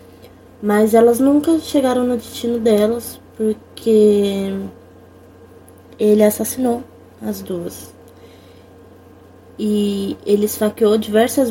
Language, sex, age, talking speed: Portuguese, female, 20-39, 85 wpm